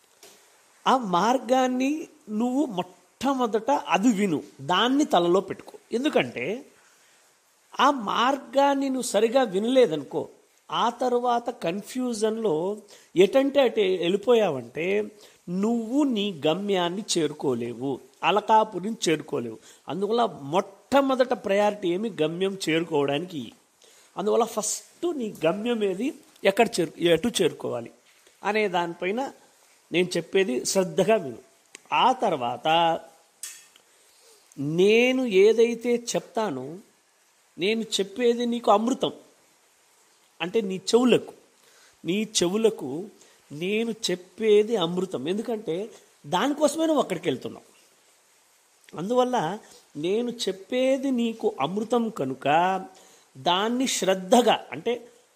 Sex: male